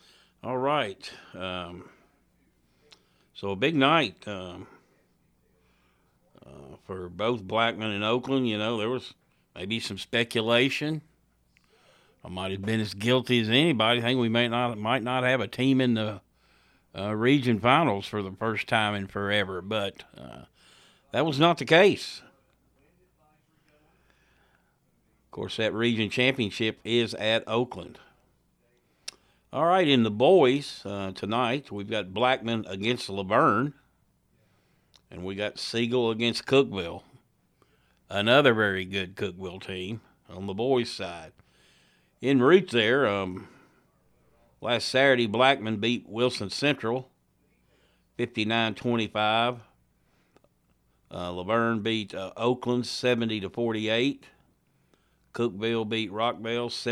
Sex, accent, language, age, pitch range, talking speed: male, American, English, 60-79, 100-125 Hz, 120 wpm